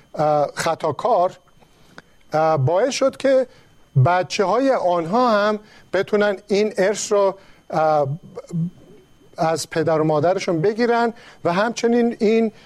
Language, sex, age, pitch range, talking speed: Persian, male, 50-69, 160-210 Hz, 95 wpm